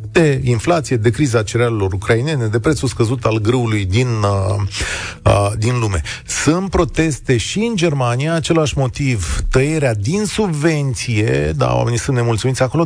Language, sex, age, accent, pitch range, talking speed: Romanian, male, 40-59, native, 110-165 Hz, 130 wpm